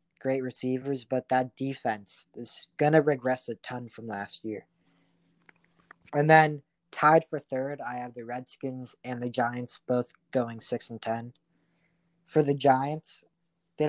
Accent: American